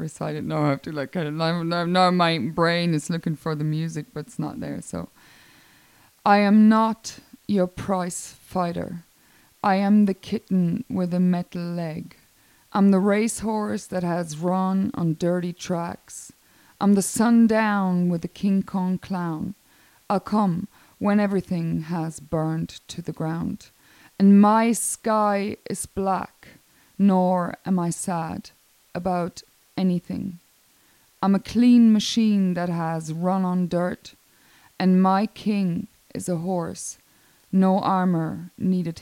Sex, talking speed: female, 140 wpm